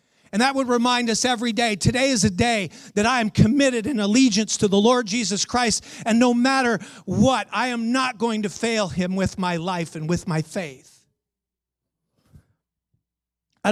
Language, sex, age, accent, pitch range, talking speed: English, male, 40-59, American, 150-225 Hz, 180 wpm